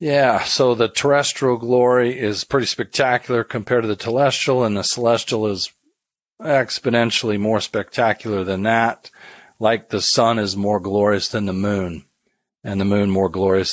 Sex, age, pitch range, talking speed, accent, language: male, 40-59, 105-125 Hz, 155 wpm, American, English